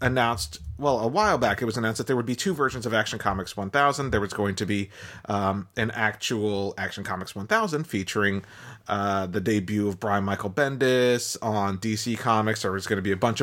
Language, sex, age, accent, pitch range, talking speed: English, male, 30-49, American, 105-125 Hz, 210 wpm